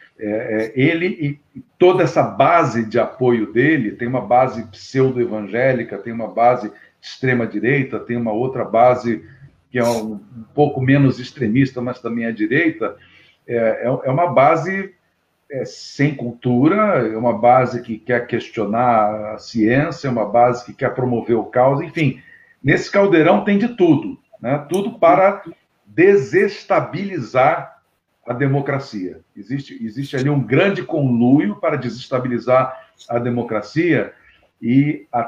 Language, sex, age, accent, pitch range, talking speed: Portuguese, male, 50-69, Brazilian, 120-150 Hz, 140 wpm